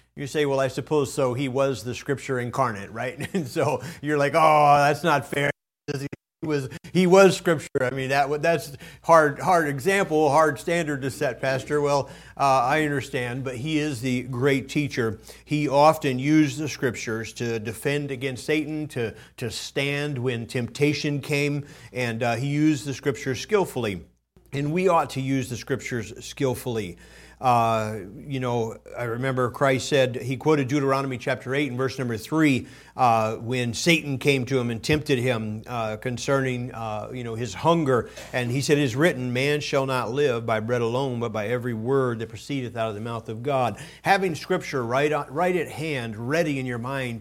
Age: 40-59